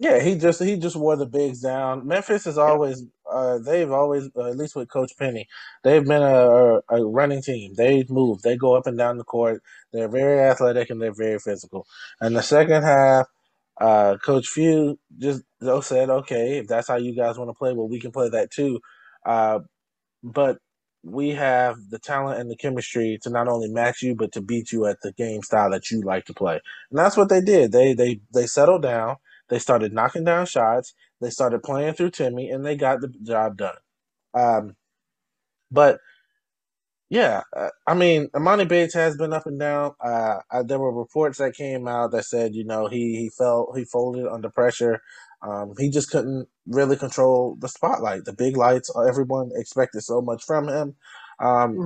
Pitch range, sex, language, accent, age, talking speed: 115-140 Hz, male, English, American, 20-39, 195 wpm